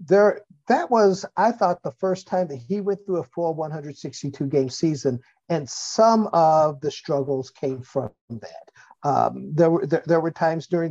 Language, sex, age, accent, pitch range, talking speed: English, male, 50-69, American, 145-190 Hz, 180 wpm